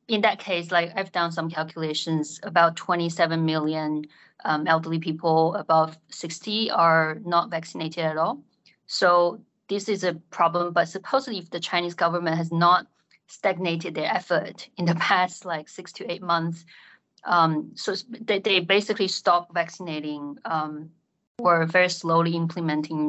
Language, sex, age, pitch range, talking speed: English, female, 20-39, 160-180 Hz, 150 wpm